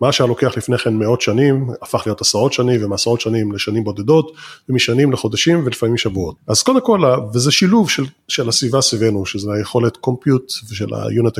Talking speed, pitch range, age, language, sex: 175 wpm, 115-150 Hz, 30-49, Hebrew, male